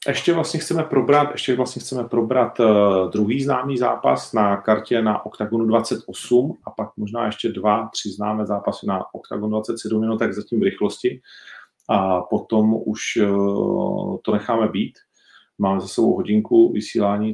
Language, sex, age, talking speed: Czech, male, 40-59, 150 wpm